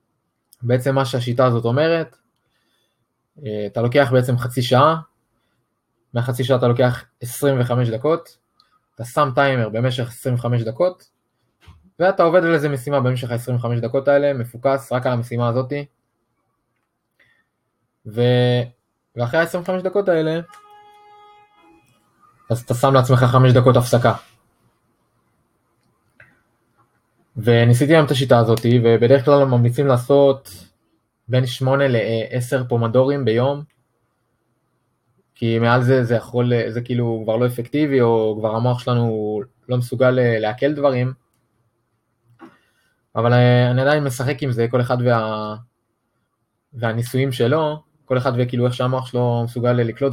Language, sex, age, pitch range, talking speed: Hebrew, male, 20-39, 115-135 Hz, 105 wpm